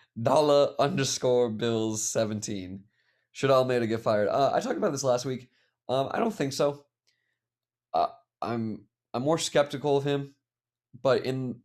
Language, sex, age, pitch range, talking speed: English, male, 20-39, 110-125 Hz, 155 wpm